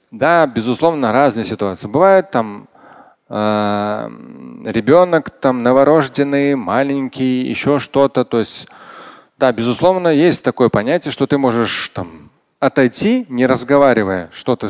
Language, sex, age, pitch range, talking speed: Russian, male, 30-49, 115-155 Hz, 110 wpm